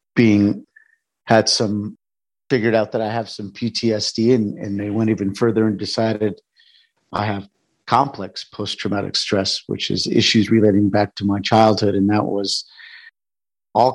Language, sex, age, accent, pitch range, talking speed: English, male, 50-69, American, 105-115 Hz, 150 wpm